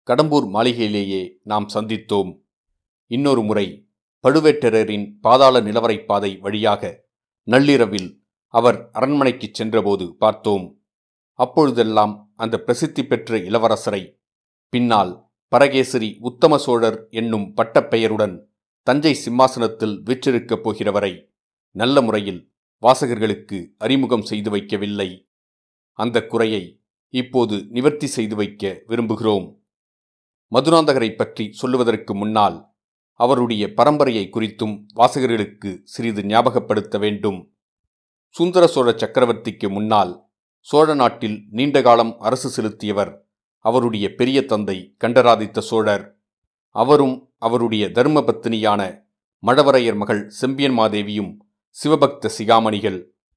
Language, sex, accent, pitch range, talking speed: Tamil, male, native, 105-130 Hz, 85 wpm